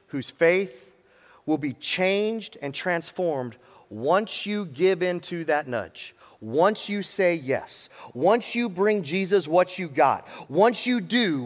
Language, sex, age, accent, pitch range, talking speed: English, male, 30-49, American, 145-185 Hz, 140 wpm